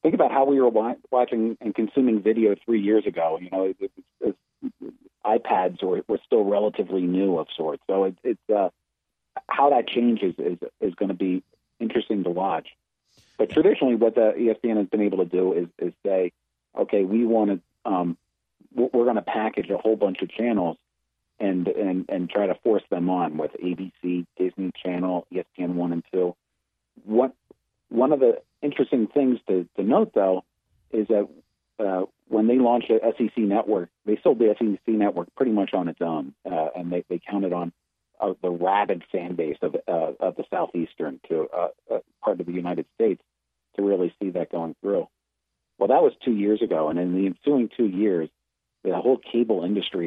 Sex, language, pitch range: male, English, 90-115 Hz